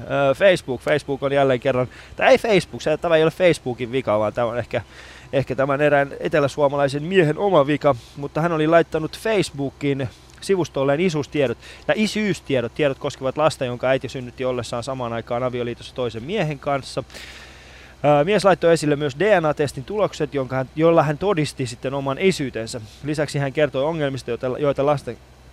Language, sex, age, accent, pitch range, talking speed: Finnish, male, 20-39, native, 125-155 Hz, 155 wpm